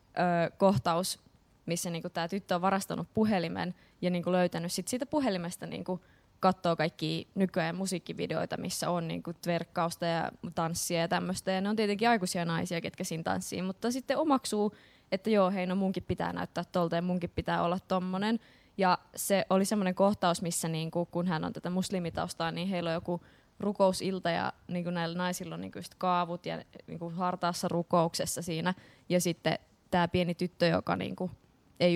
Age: 20-39